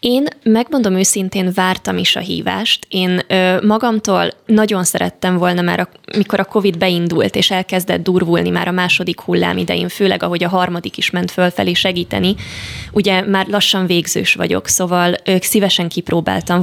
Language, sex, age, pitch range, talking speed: Hungarian, female, 20-39, 175-210 Hz, 155 wpm